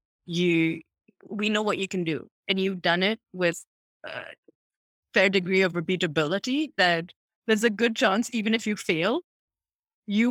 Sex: female